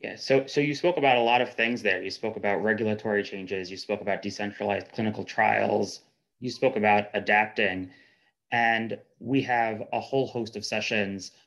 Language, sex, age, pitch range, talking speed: English, male, 30-49, 100-120 Hz, 180 wpm